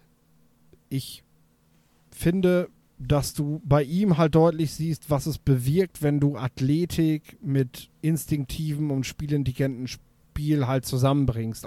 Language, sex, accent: German, male, German